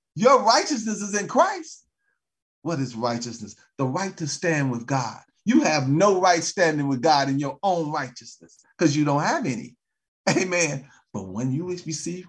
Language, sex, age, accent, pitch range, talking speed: English, male, 40-59, American, 140-215 Hz, 170 wpm